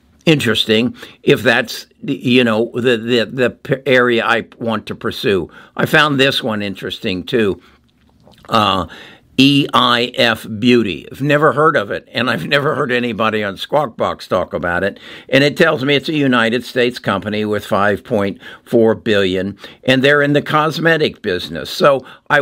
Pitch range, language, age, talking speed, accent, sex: 105-130 Hz, English, 60-79, 155 wpm, American, male